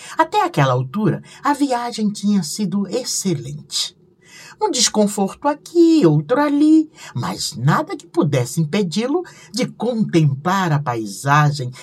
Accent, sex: Brazilian, male